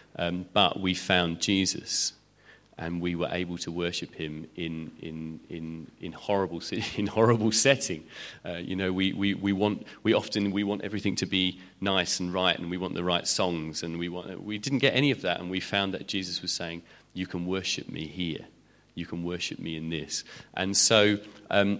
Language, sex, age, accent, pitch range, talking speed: English, male, 30-49, British, 90-105 Hz, 200 wpm